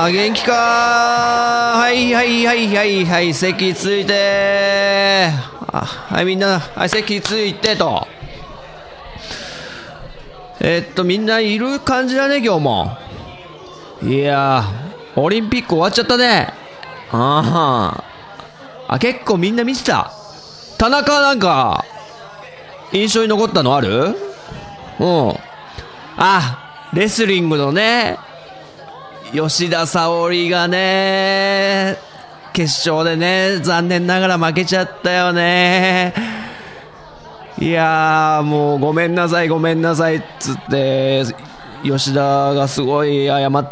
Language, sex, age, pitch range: Japanese, male, 40-59, 165-235 Hz